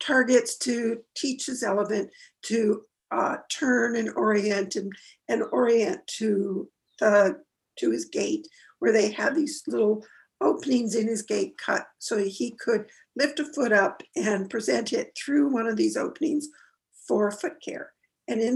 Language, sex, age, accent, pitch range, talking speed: English, female, 60-79, American, 215-310 Hz, 155 wpm